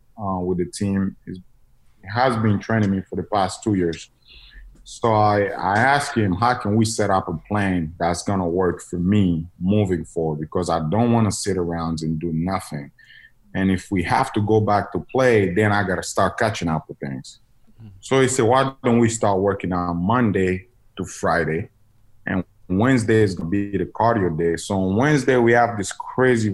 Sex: male